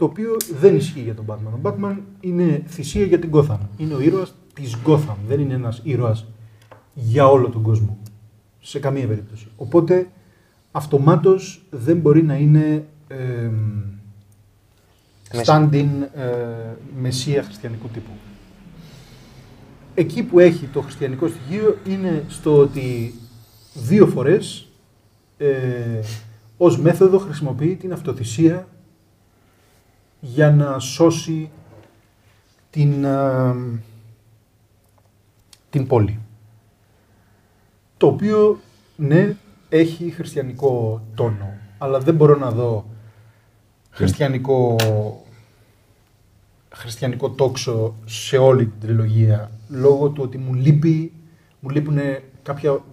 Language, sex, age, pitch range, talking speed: Greek, male, 30-49, 110-155 Hz, 105 wpm